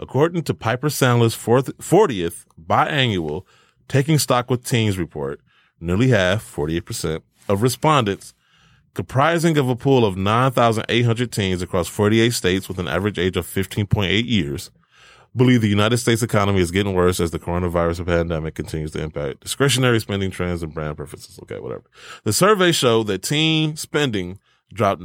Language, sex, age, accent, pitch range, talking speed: English, male, 20-39, American, 90-125 Hz, 155 wpm